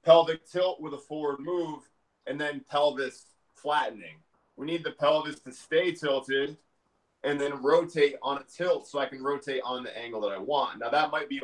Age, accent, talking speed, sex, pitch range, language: 20-39, American, 200 wpm, male, 120-150 Hz, English